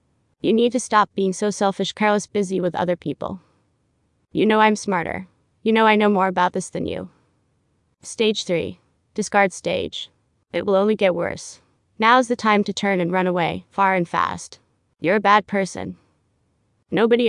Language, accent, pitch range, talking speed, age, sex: English, American, 180-215 Hz, 175 wpm, 20-39, female